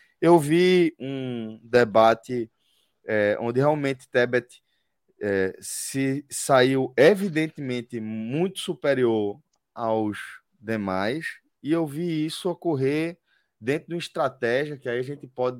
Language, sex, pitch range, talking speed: Portuguese, male, 115-145 Hz, 110 wpm